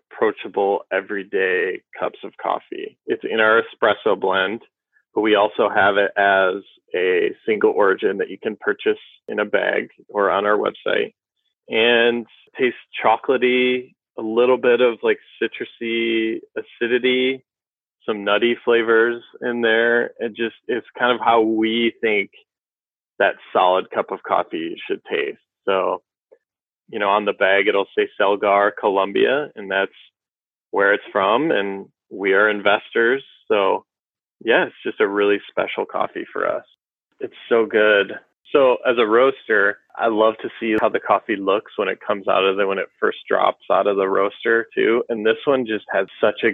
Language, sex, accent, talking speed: English, male, American, 160 wpm